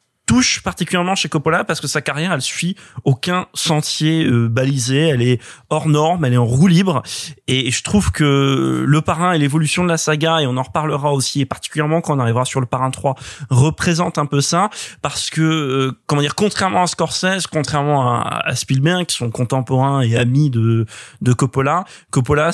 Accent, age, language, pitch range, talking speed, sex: French, 20-39, French, 125-160 Hz, 195 wpm, male